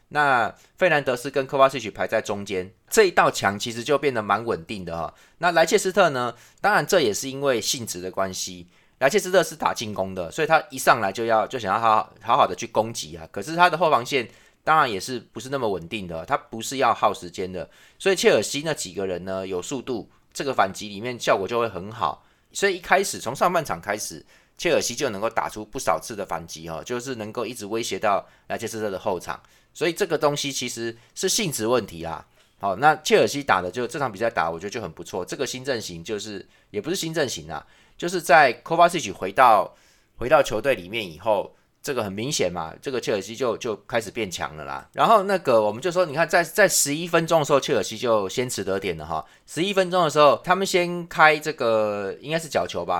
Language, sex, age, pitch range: Chinese, male, 20-39, 100-160 Hz